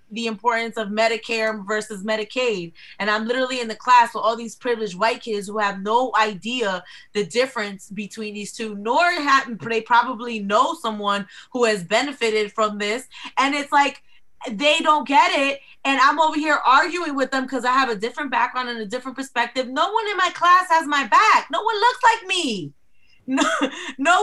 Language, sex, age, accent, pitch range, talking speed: English, female, 20-39, American, 225-320 Hz, 190 wpm